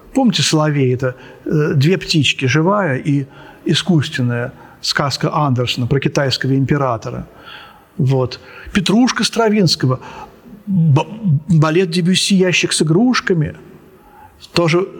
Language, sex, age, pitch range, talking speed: Russian, male, 50-69, 140-180 Hz, 85 wpm